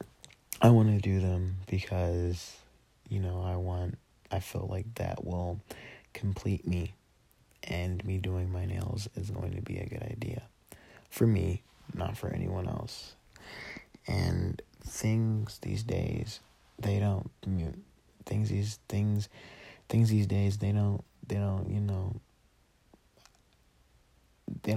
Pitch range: 90-105 Hz